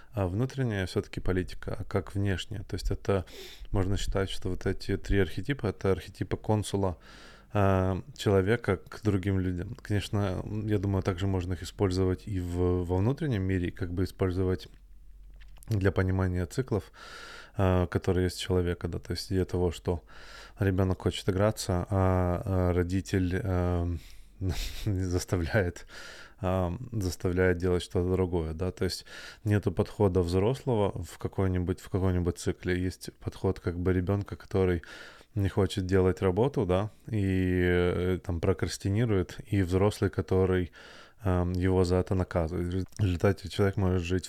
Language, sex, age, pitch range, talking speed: Russian, male, 20-39, 90-100 Hz, 140 wpm